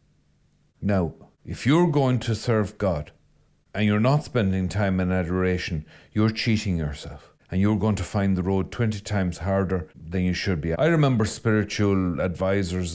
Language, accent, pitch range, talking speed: English, Irish, 95-130 Hz, 160 wpm